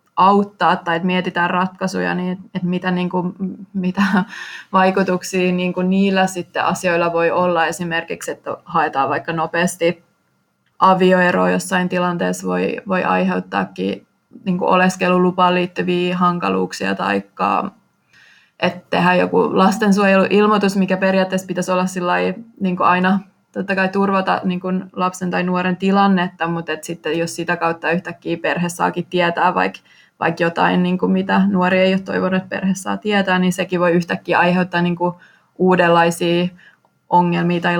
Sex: female